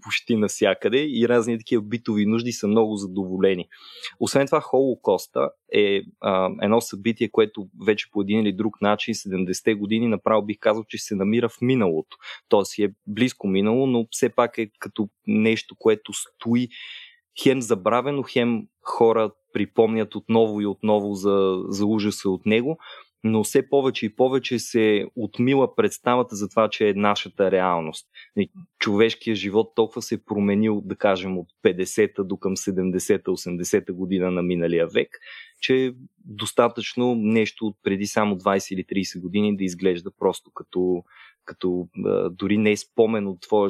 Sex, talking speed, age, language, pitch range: male, 155 wpm, 20-39, Bulgarian, 95-115 Hz